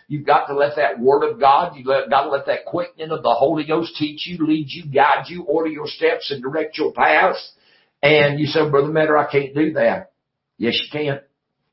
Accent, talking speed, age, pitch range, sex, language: American, 220 wpm, 60-79, 110-145 Hz, male, English